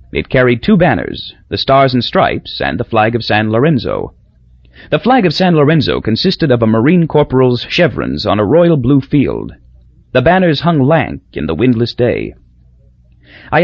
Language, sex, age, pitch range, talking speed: English, male, 30-49, 90-150 Hz, 170 wpm